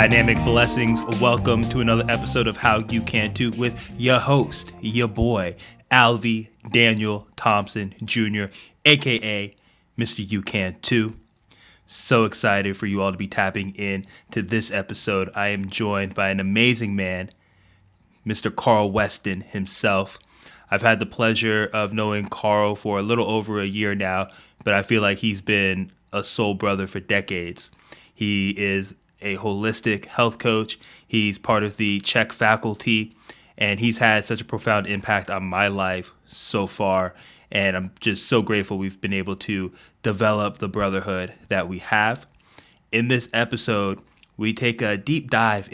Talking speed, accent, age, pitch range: 155 wpm, American, 20-39, 100-115 Hz